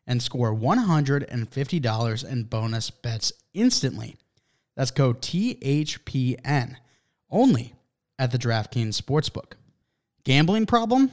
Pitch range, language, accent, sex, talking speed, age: 120-150 Hz, English, American, male, 90 wpm, 20-39